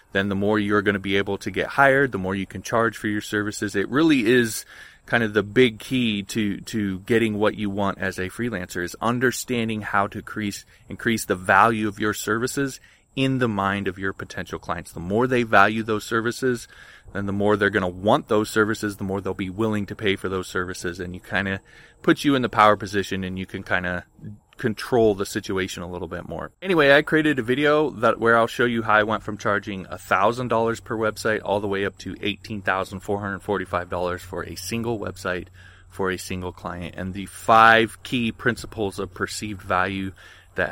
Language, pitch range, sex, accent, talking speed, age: English, 95-115 Hz, male, American, 210 wpm, 20-39